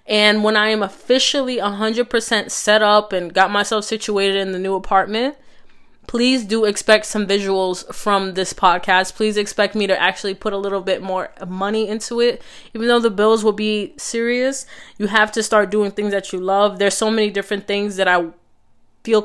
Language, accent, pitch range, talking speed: English, American, 190-220 Hz, 190 wpm